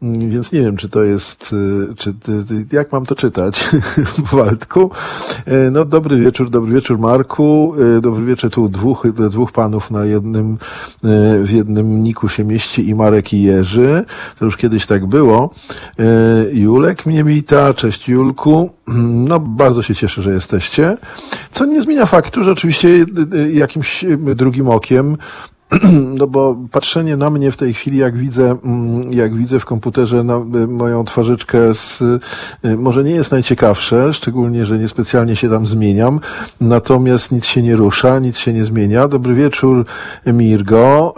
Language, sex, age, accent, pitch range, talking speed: Polish, male, 50-69, native, 110-135 Hz, 150 wpm